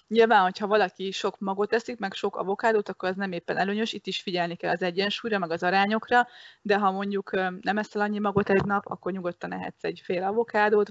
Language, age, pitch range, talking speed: Hungarian, 20-39, 180-205 Hz, 210 wpm